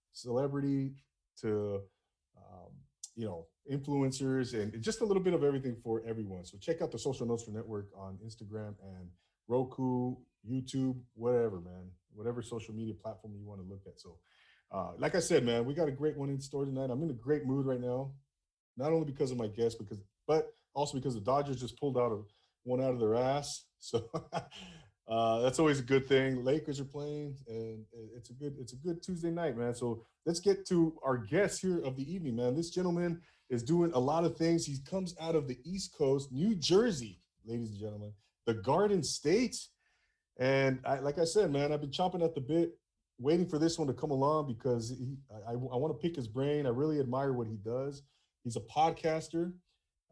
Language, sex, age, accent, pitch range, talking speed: English, male, 30-49, American, 115-160 Hz, 205 wpm